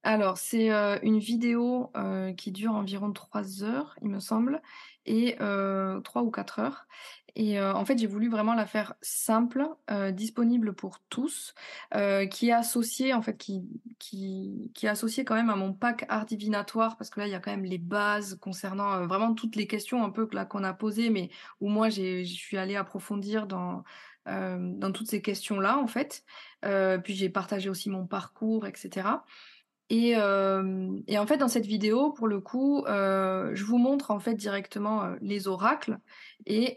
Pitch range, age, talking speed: 195-230 Hz, 20-39, 195 wpm